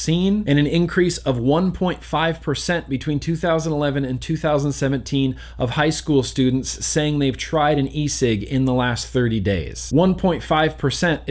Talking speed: 125 wpm